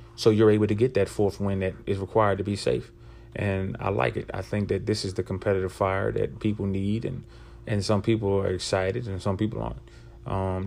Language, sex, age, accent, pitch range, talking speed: English, male, 30-49, American, 100-115 Hz, 225 wpm